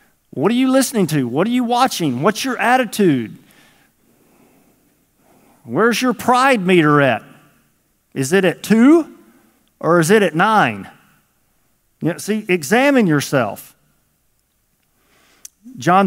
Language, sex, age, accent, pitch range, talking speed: English, male, 50-69, American, 130-190 Hz, 110 wpm